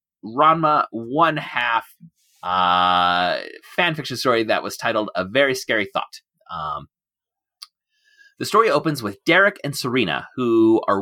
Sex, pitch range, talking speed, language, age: male, 100-145 Hz, 130 wpm, English, 30-49